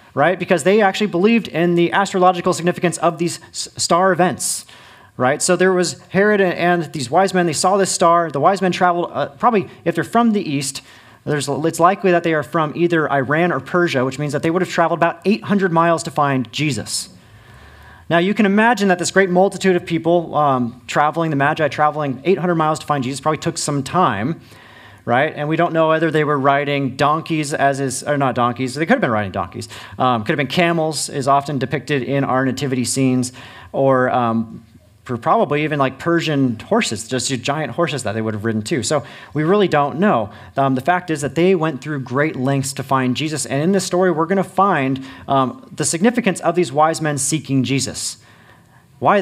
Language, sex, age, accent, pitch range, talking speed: English, male, 30-49, American, 135-175 Hz, 205 wpm